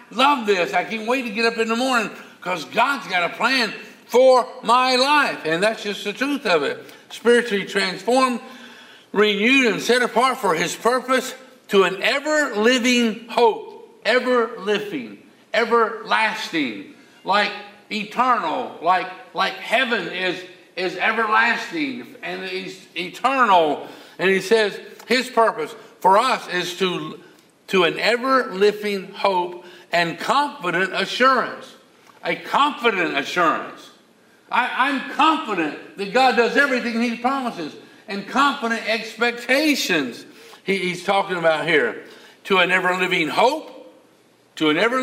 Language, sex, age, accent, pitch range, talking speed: English, male, 50-69, American, 195-250 Hz, 130 wpm